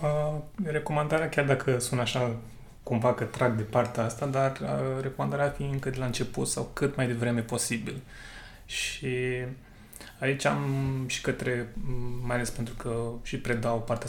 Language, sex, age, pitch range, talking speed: Romanian, male, 20-39, 120-135 Hz, 160 wpm